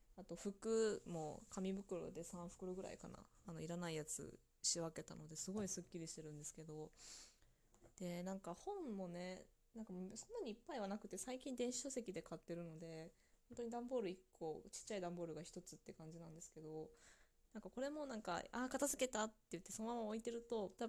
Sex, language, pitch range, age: female, Japanese, 165-220 Hz, 20-39